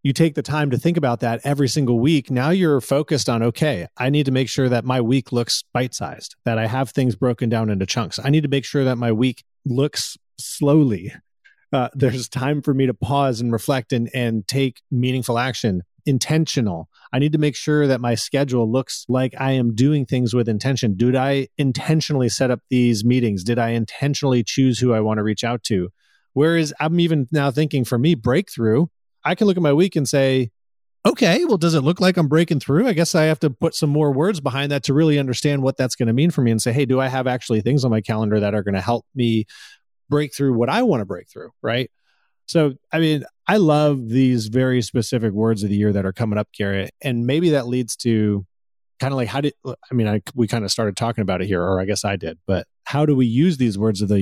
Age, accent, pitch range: 30-49, American, 115-145 Hz